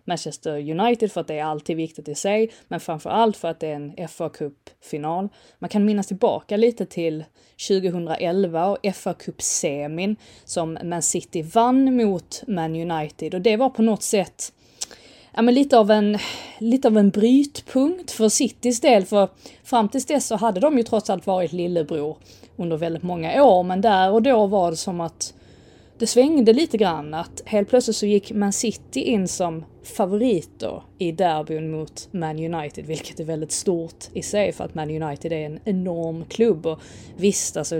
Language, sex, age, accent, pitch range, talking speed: Swedish, female, 30-49, native, 165-220 Hz, 175 wpm